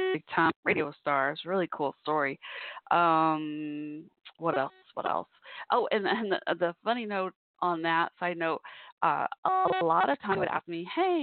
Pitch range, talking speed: 165-215 Hz, 170 wpm